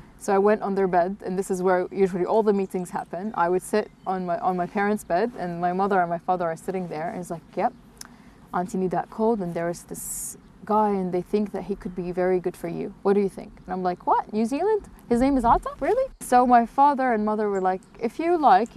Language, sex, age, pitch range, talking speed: English, female, 20-39, 185-230 Hz, 260 wpm